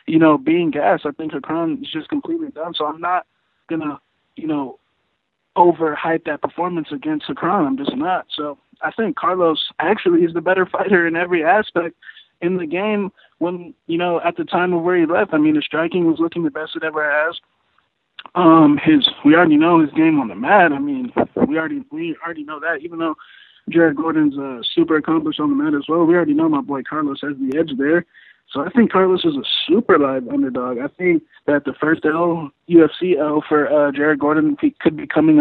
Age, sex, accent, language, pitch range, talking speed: 20-39, male, American, English, 155-200 Hz, 210 wpm